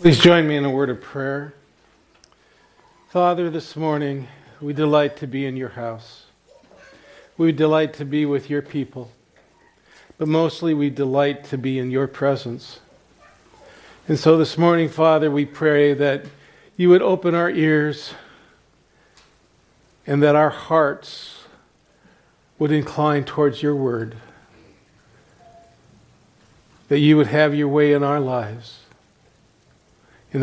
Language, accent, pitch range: English, American, 135-165 Hz